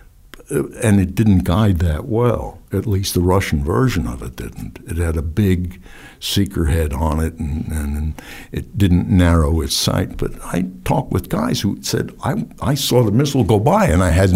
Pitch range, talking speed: 85-125 Hz, 195 wpm